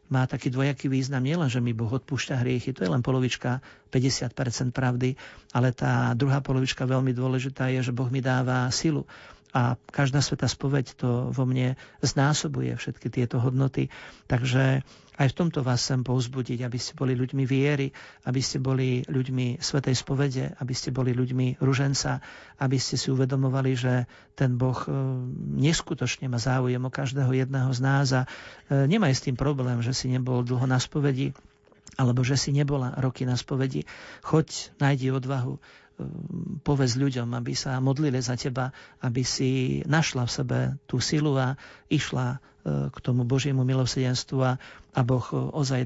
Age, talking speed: 50-69, 160 wpm